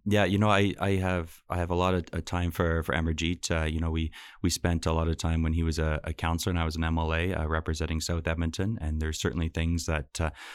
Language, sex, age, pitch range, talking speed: English, male, 20-39, 80-90 Hz, 260 wpm